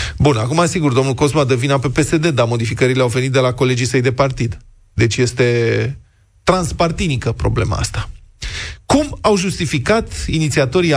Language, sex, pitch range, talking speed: Romanian, male, 120-160 Hz, 150 wpm